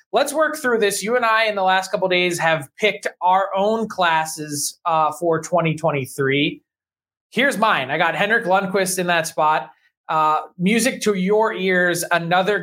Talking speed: 170 wpm